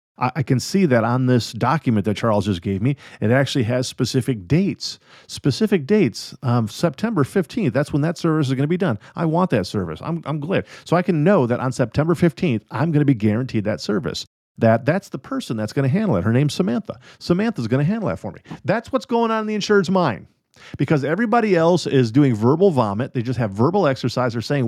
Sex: male